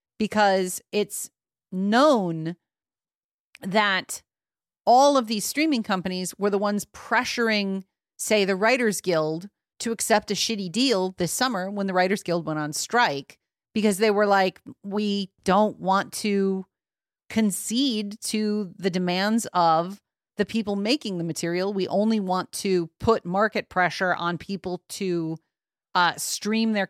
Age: 40-59